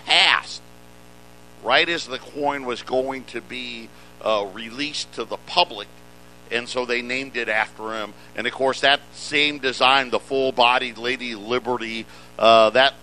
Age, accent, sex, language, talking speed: 50-69, American, male, English, 155 wpm